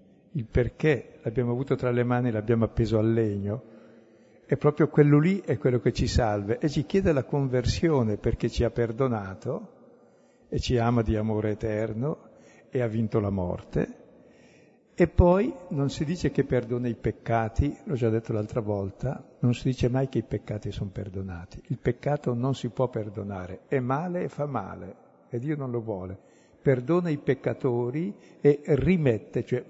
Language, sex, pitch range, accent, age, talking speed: Italian, male, 110-145 Hz, native, 60-79, 175 wpm